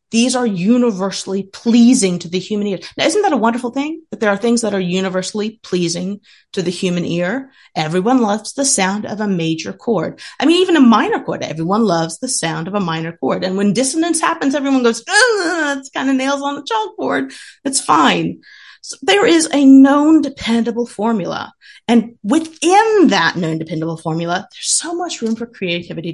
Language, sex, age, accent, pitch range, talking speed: English, female, 30-49, American, 190-275 Hz, 185 wpm